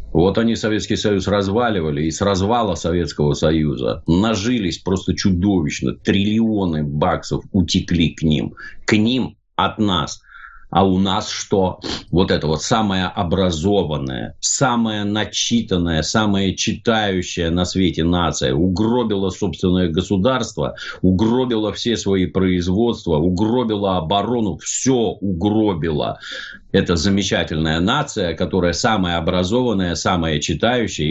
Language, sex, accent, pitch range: Russian, male, native, 85-110 Hz